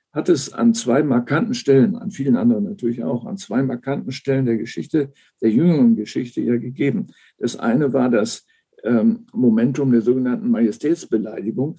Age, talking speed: 50-69, 155 wpm